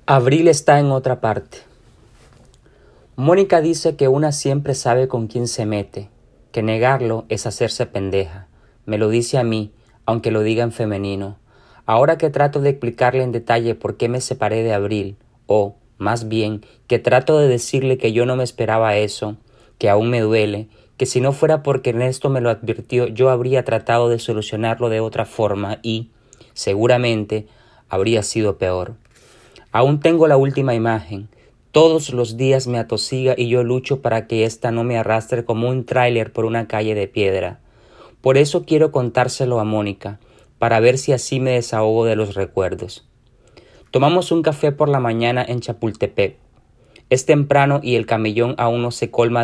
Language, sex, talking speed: Spanish, male, 170 wpm